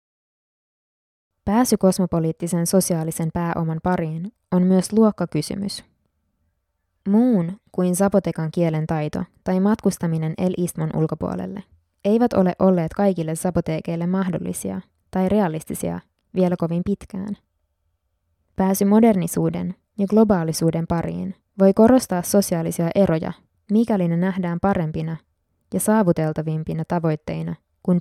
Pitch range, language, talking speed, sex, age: 160-195 Hz, Finnish, 95 wpm, female, 20-39